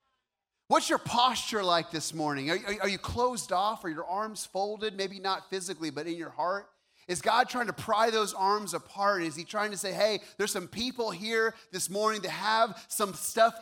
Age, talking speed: 30-49, 200 wpm